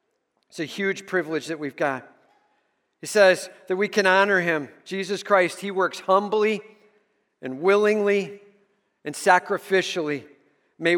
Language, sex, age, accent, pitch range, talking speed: English, male, 50-69, American, 175-215 Hz, 130 wpm